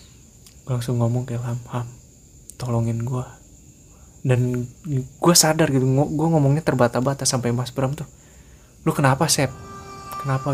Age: 20-39